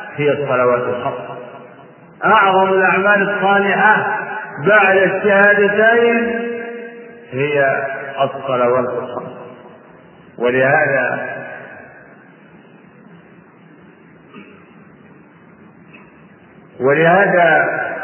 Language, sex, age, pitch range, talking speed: Arabic, male, 50-69, 125-185 Hz, 45 wpm